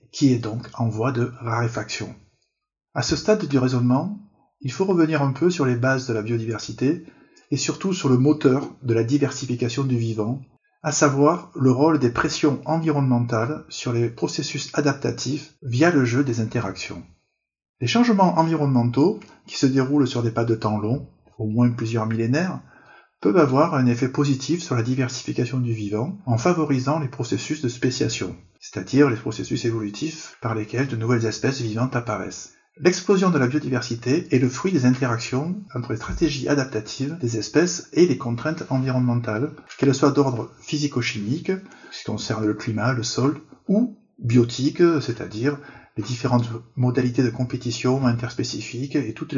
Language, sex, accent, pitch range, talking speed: French, male, French, 115-150 Hz, 160 wpm